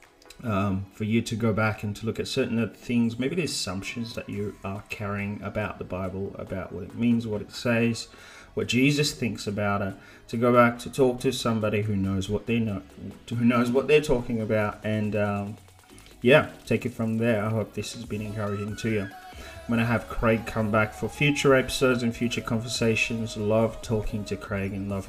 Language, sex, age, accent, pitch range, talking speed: English, male, 30-49, Australian, 105-120 Hz, 210 wpm